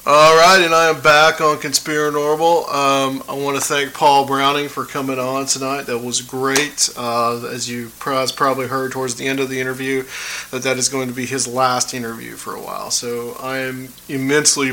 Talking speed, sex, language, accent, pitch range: 195 wpm, male, English, American, 115-130 Hz